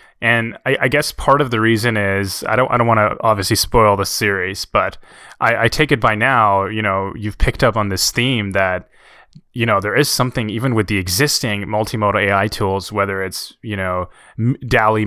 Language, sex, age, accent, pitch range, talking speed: English, male, 20-39, American, 100-120 Hz, 205 wpm